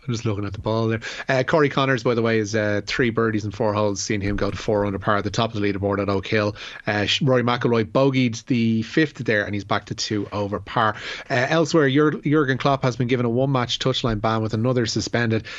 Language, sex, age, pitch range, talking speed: English, male, 30-49, 110-140 Hz, 250 wpm